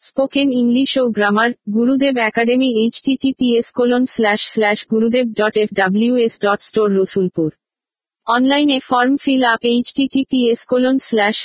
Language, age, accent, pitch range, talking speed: Bengali, 50-69, native, 215-250 Hz, 135 wpm